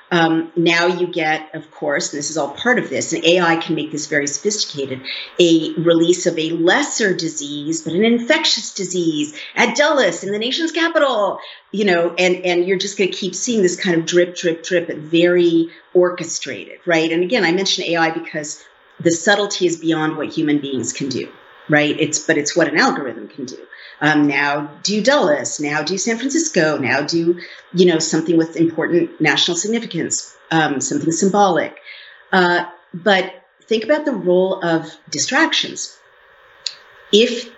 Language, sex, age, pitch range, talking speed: English, female, 50-69, 155-190 Hz, 170 wpm